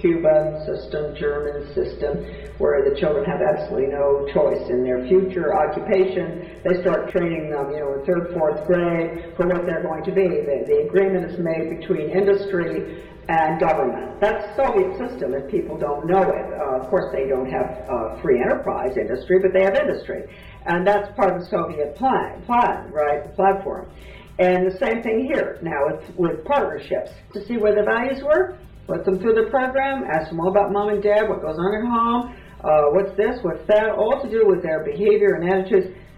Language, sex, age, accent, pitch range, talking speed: English, female, 60-79, American, 170-210 Hz, 195 wpm